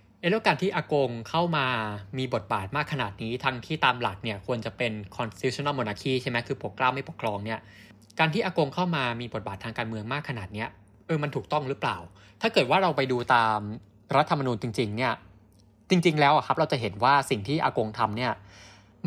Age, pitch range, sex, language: 20-39, 105-150 Hz, male, Thai